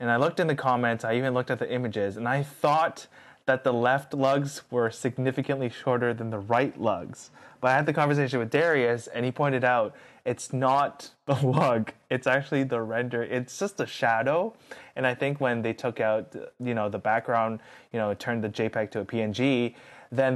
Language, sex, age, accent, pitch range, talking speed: English, male, 20-39, American, 115-135 Hz, 205 wpm